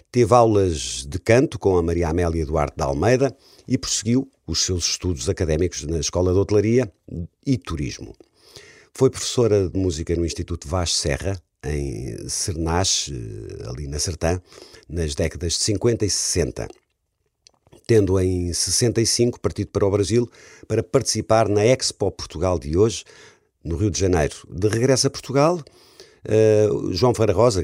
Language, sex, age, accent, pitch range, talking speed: Portuguese, male, 50-69, Portuguese, 85-110 Hz, 145 wpm